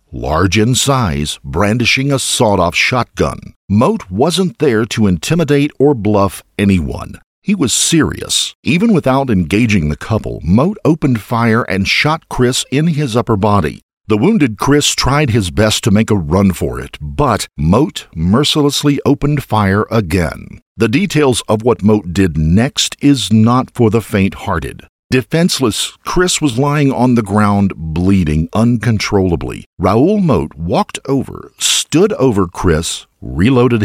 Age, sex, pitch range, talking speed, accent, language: 50-69, male, 95-135 Hz, 140 wpm, American, English